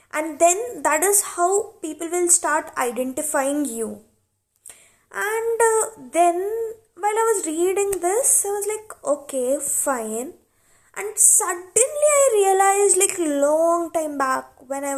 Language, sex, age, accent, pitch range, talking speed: English, female, 20-39, Indian, 255-345 Hz, 130 wpm